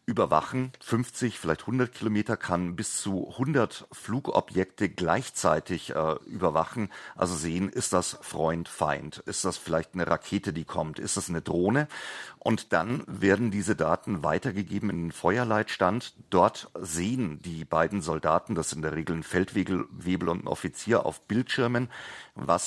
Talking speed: 150 wpm